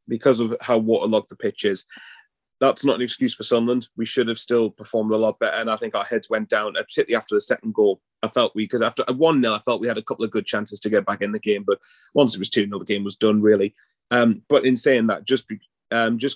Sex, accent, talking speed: male, British, 265 wpm